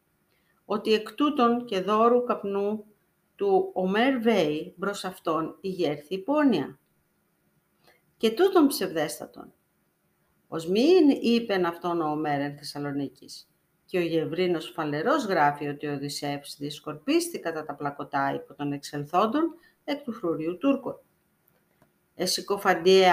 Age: 40-59